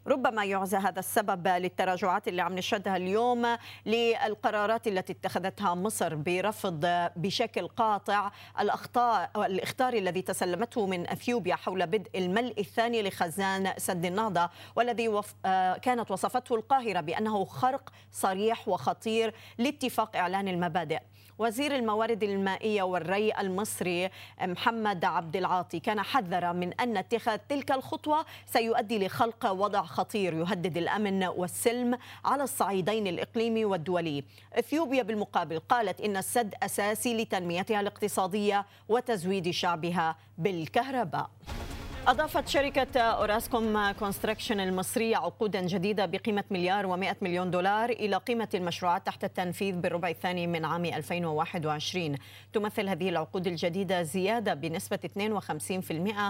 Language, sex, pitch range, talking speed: Arabic, female, 175-225 Hz, 110 wpm